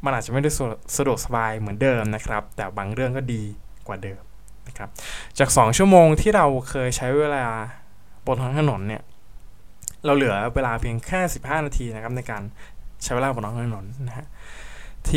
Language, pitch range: Thai, 105-135 Hz